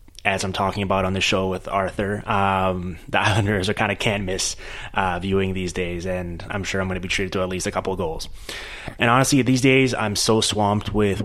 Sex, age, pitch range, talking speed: male, 20-39, 95-105 Hz, 230 wpm